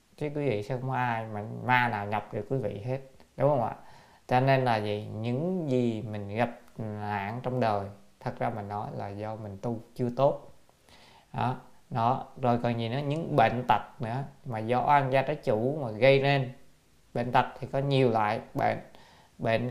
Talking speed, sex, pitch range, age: 200 wpm, male, 105-130 Hz, 20-39